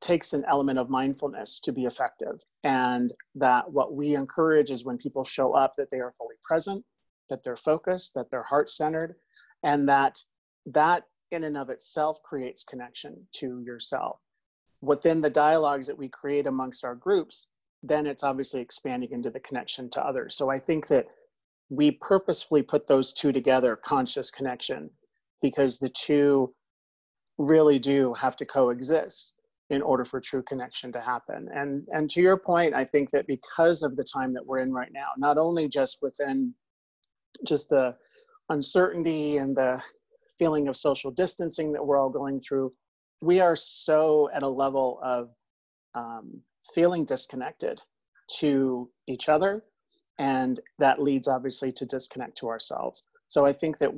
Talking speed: 160 wpm